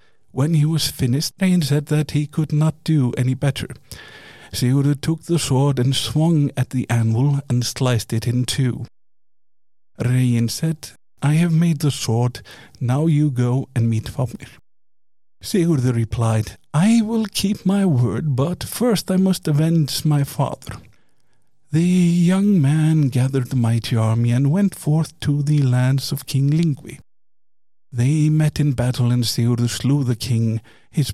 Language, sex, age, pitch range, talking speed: English, male, 50-69, 125-170 Hz, 155 wpm